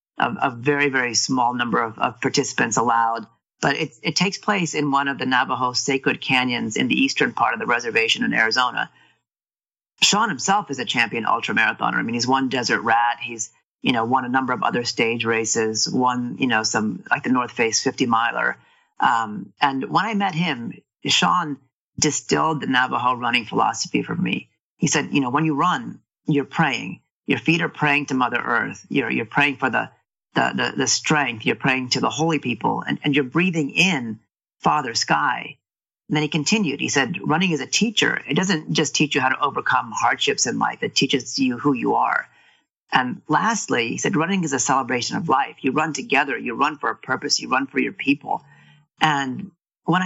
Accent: American